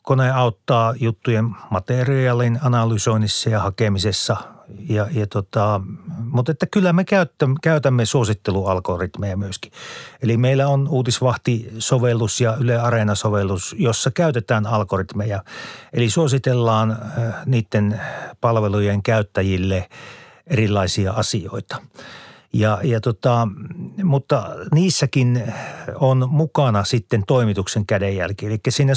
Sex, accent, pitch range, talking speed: male, native, 105-130 Hz, 95 wpm